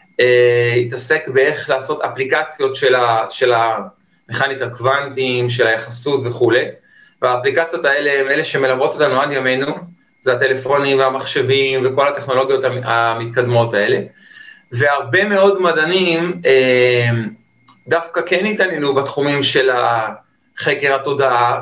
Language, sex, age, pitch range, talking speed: Hebrew, male, 30-49, 125-165 Hz, 110 wpm